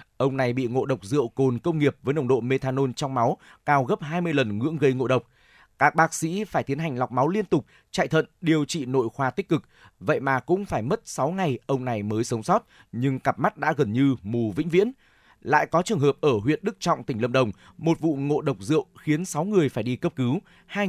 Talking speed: 245 wpm